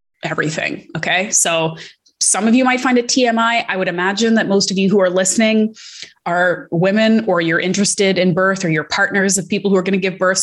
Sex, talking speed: female, 220 wpm